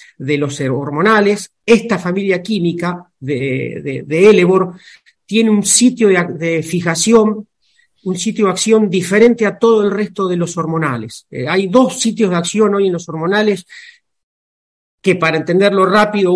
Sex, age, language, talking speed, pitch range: male, 50-69, Spanish, 155 wpm, 170-225 Hz